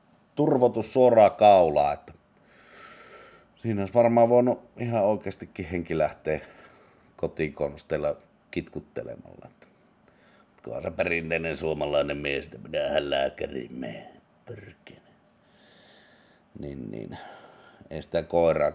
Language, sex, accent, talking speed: Finnish, male, native, 85 wpm